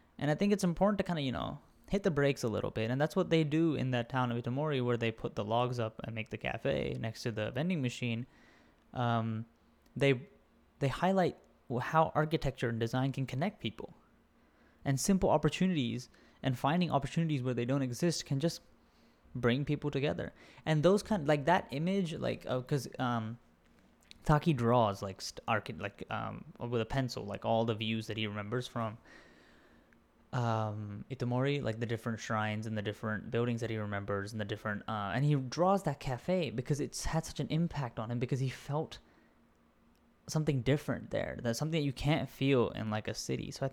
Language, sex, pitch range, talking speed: English, male, 115-155 Hz, 195 wpm